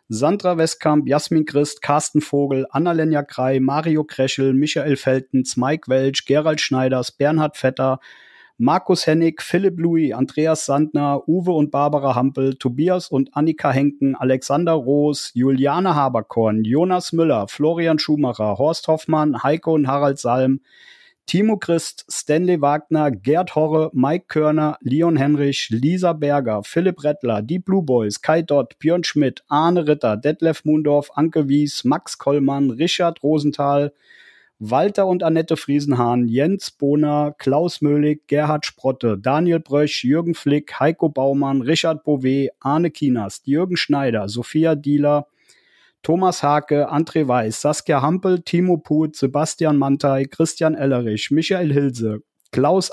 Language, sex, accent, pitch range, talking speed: German, male, German, 135-160 Hz, 130 wpm